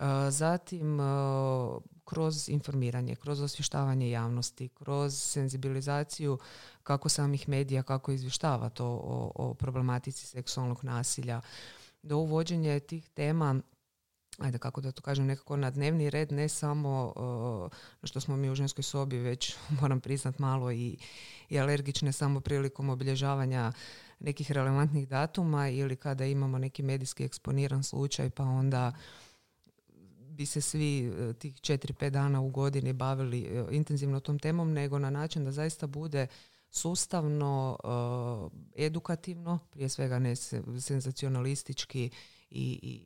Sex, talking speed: female, 125 wpm